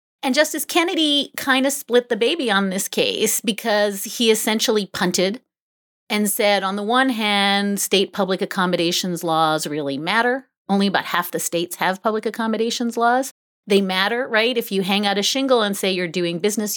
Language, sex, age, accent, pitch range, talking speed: English, female, 30-49, American, 185-255 Hz, 180 wpm